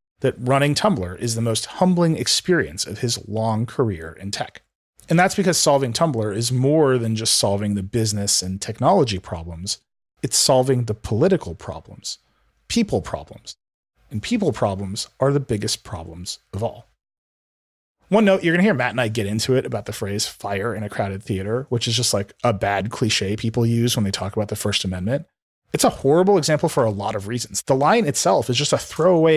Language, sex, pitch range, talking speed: English, male, 105-155 Hz, 200 wpm